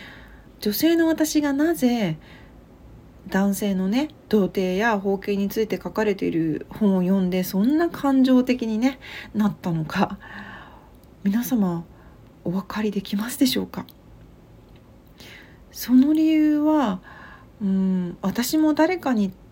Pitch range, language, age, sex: 185-235 Hz, Japanese, 40-59, female